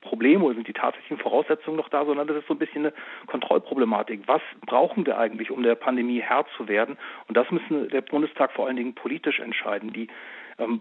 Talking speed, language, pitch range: 210 wpm, German, 120-145 Hz